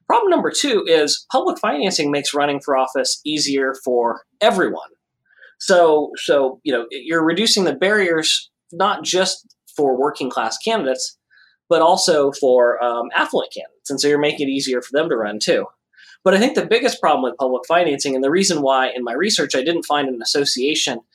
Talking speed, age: 185 wpm, 30-49